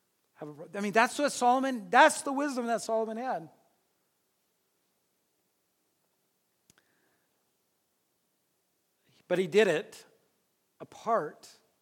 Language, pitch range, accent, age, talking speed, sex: English, 170-230 Hz, American, 40-59, 80 wpm, male